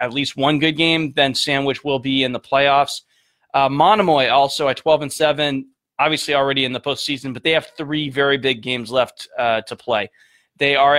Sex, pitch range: male, 130-155 Hz